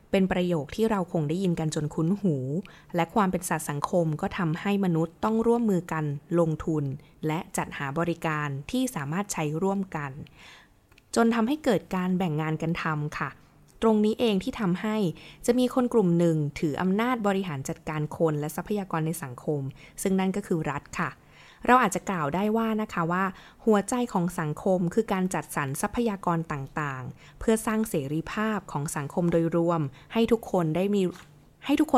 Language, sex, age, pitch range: Thai, female, 20-39, 155-200 Hz